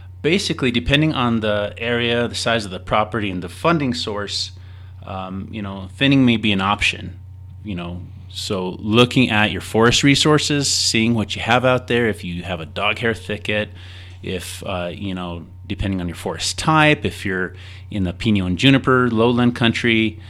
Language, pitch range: English, 90-115 Hz